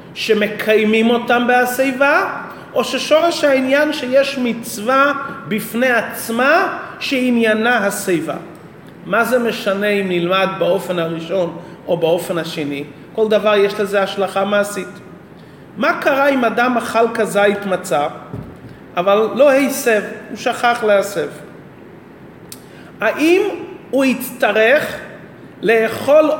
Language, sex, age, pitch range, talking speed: Hebrew, male, 40-59, 200-265 Hz, 100 wpm